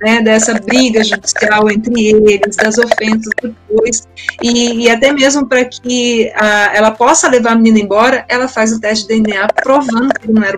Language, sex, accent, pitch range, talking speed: Portuguese, female, Brazilian, 215-255 Hz, 195 wpm